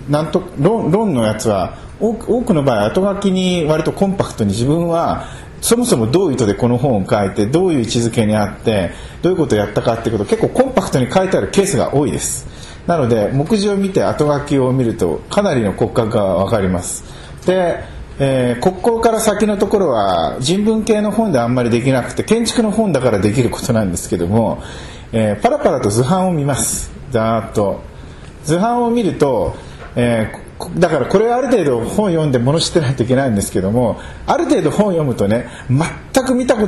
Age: 40-59